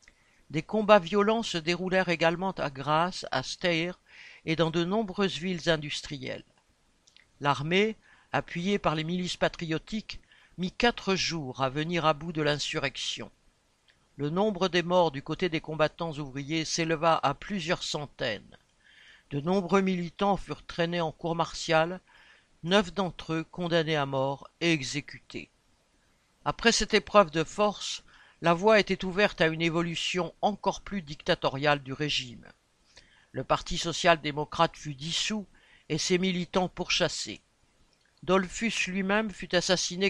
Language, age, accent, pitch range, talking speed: French, 60-79, French, 150-185 Hz, 135 wpm